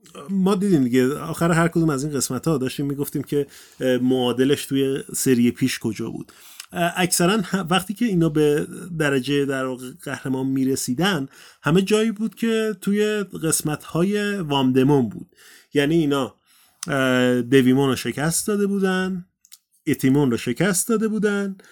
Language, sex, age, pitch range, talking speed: Persian, male, 30-49, 135-190 Hz, 140 wpm